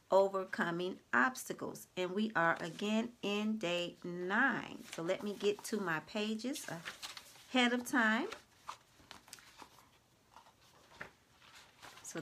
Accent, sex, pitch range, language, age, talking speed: American, female, 185-240 Hz, English, 40-59, 100 wpm